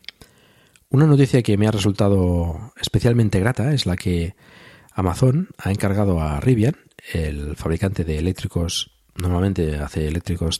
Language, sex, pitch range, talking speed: Spanish, male, 85-115 Hz, 130 wpm